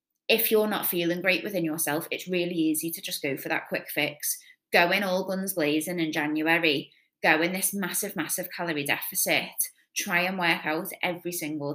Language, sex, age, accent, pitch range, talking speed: English, female, 20-39, British, 165-205 Hz, 190 wpm